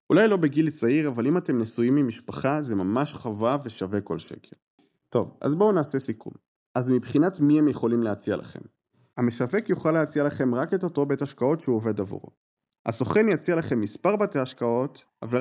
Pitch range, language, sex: 115-150 Hz, Hebrew, male